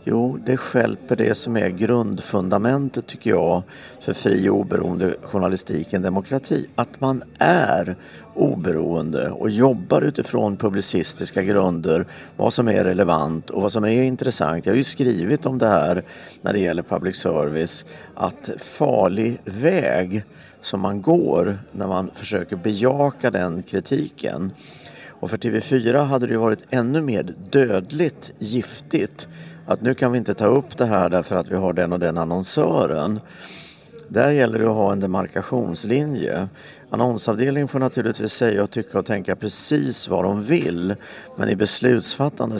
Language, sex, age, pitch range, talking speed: Swedish, male, 50-69, 95-130 Hz, 150 wpm